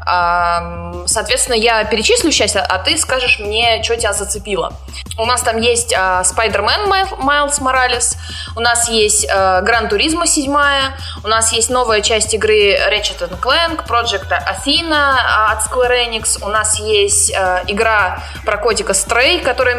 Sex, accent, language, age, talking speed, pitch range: female, native, Russian, 20-39, 135 wpm, 200-275 Hz